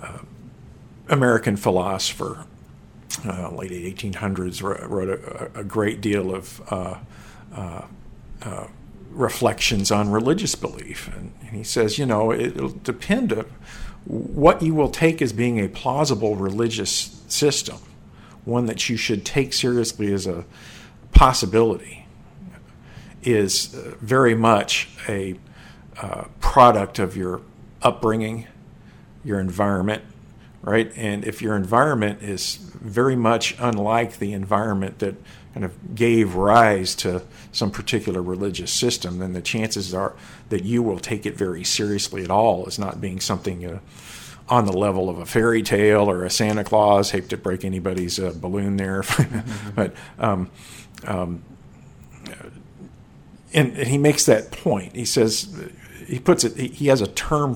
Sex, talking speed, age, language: male, 140 wpm, 50-69, English